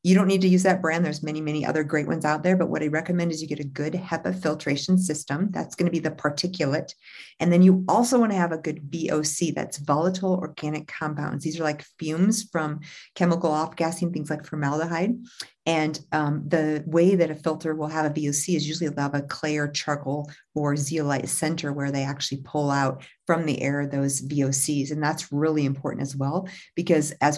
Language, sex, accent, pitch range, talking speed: English, female, American, 145-165 Hz, 210 wpm